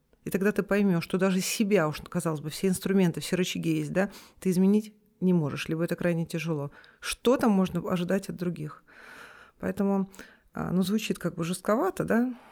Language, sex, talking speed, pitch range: Russian, female, 175 wpm, 175-215 Hz